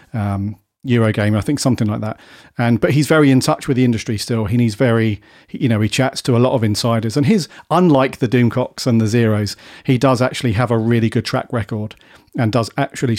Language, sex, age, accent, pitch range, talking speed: English, male, 40-59, British, 115-135 Hz, 230 wpm